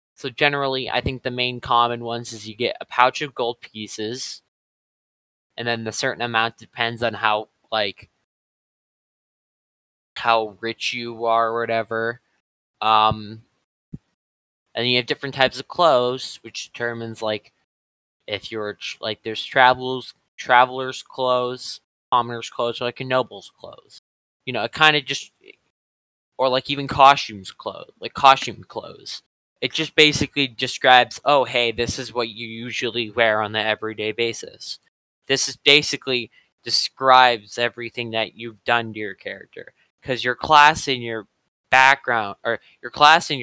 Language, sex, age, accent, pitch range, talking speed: English, male, 20-39, American, 110-130 Hz, 145 wpm